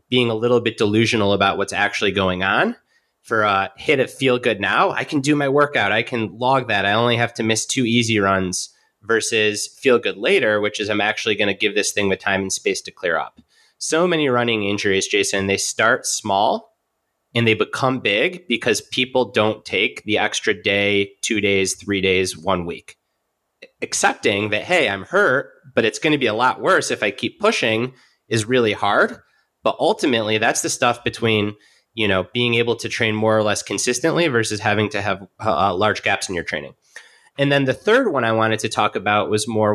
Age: 30-49